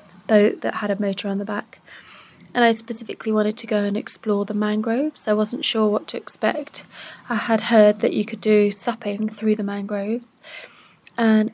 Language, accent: English, British